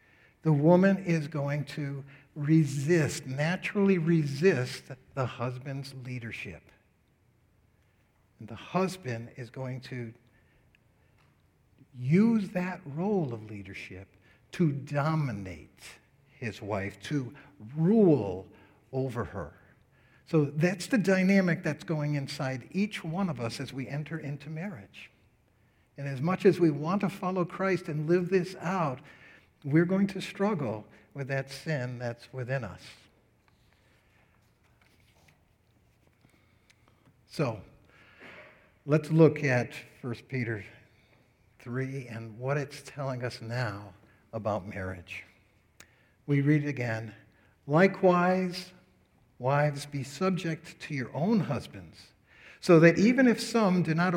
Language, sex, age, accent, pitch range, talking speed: English, male, 60-79, American, 115-165 Hz, 115 wpm